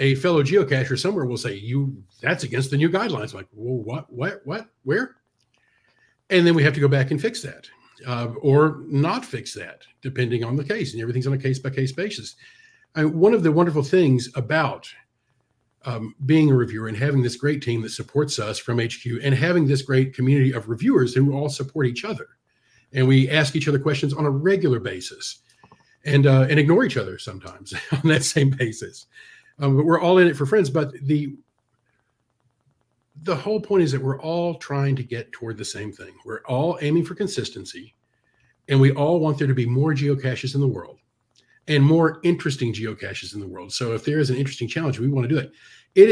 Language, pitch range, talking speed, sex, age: English, 125-160 Hz, 210 wpm, male, 50-69